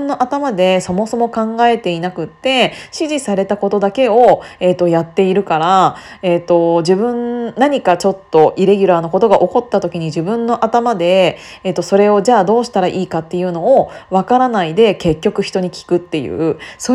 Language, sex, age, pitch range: Japanese, female, 20-39, 180-255 Hz